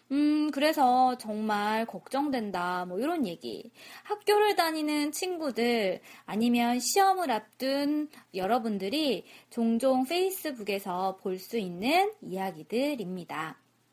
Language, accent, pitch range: Korean, native, 200-320 Hz